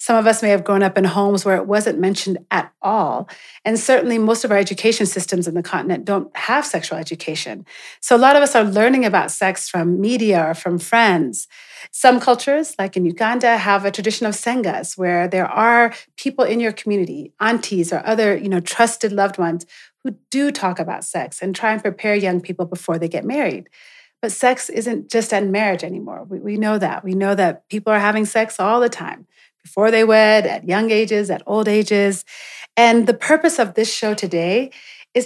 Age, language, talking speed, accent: 30-49, English, 205 wpm, American